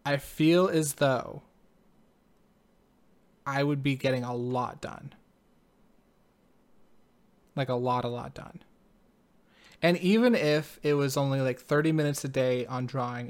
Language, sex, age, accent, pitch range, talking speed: English, male, 20-39, American, 130-165 Hz, 135 wpm